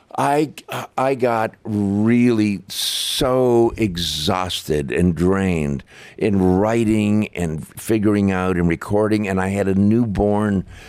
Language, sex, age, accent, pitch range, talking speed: English, male, 50-69, American, 95-115 Hz, 110 wpm